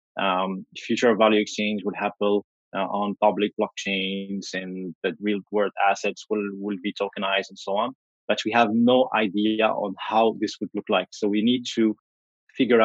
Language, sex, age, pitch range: English, male, 20-39, 105-120 Hz